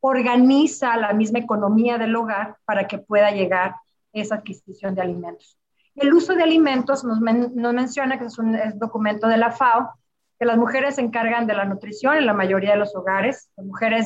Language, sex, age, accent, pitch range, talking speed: Spanish, female, 40-59, Mexican, 205-250 Hz, 195 wpm